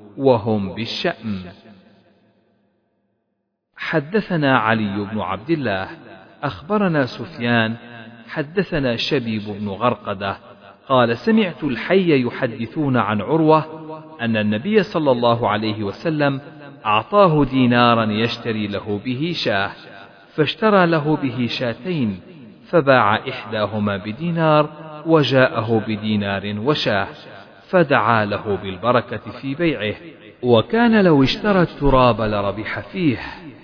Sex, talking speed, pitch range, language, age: male, 95 wpm, 110-155 Hz, Arabic, 40-59